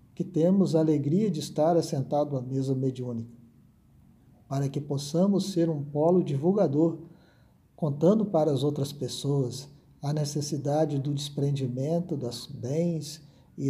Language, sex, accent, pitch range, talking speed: Portuguese, male, Brazilian, 130-165 Hz, 125 wpm